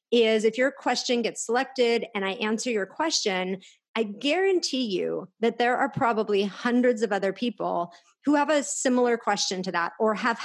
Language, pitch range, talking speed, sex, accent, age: English, 205-260 Hz, 180 wpm, female, American, 30-49